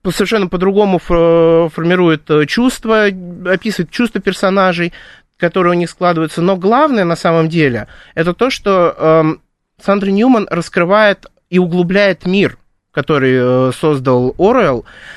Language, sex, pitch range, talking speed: Russian, male, 160-210 Hz, 115 wpm